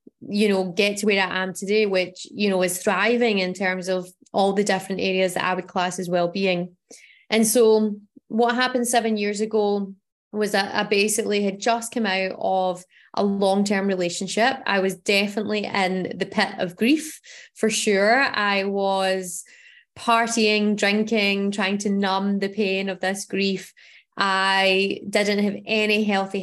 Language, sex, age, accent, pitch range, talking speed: English, female, 20-39, British, 190-215 Hz, 165 wpm